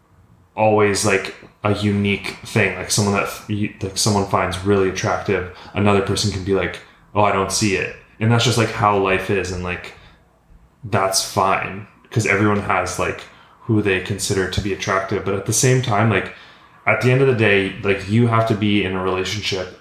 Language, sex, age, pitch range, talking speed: English, male, 20-39, 95-105 Hz, 195 wpm